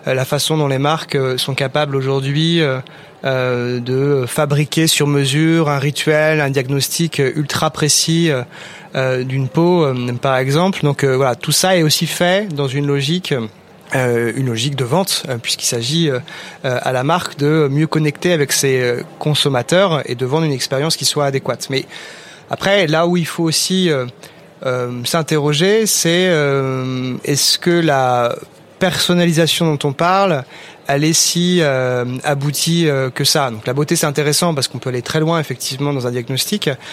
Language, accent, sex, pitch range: French, French, male, 135-165 Hz